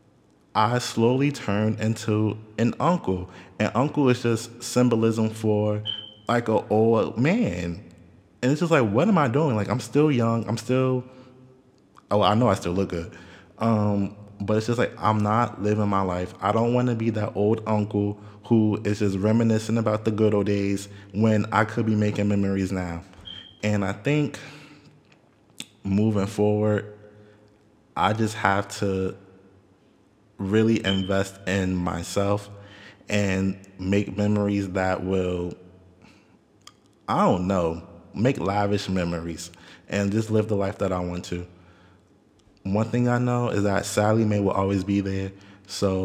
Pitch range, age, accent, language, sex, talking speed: 95-110 Hz, 20-39, American, English, male, 150 wpm